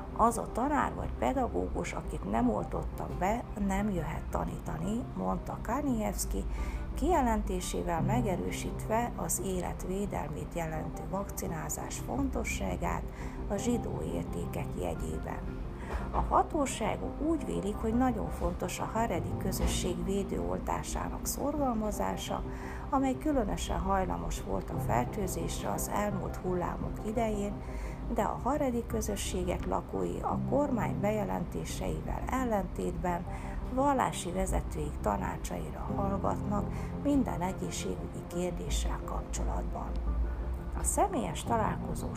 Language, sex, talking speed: Hungarian, female, 95 wpm